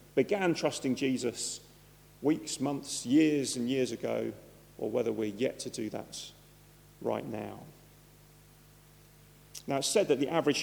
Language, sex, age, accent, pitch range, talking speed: English, male, 40-59, British, 125-160 Hz, 135 wpm